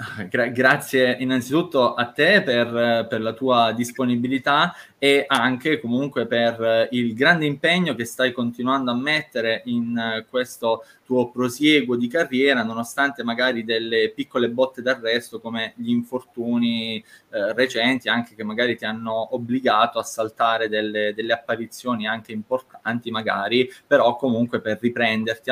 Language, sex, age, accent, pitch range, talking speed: Italian, male, 20-39, native, 115-130 Hz, 130 wpm